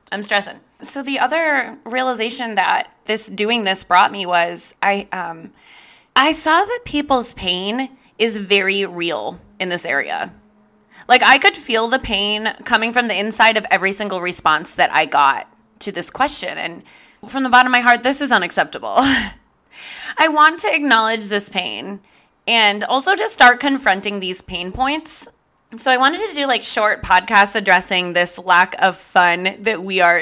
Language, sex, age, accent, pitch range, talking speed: English, female, 20-39, American, 195-260 Hz, 170 wpm